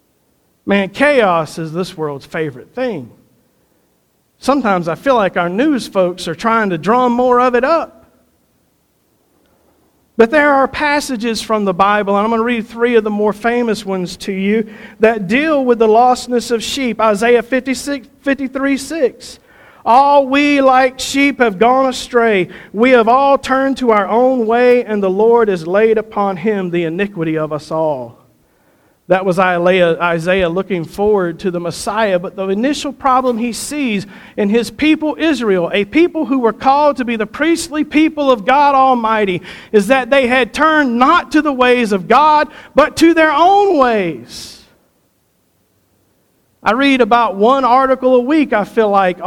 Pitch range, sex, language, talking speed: 200-270 Hz, male, English, 165 wpm